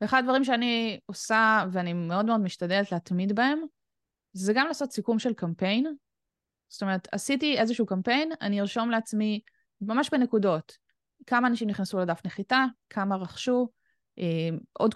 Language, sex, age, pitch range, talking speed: Hebrew, female, 20-39, 180-250 Hz, 135 wpm